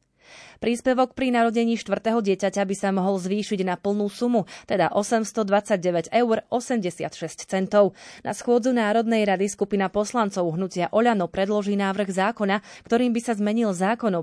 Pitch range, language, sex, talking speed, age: 180-220 Hz, Slovak, female, 150 wpm, 30-49